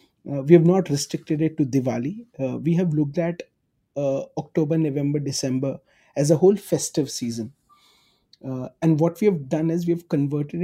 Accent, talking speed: Indian, 180 wpm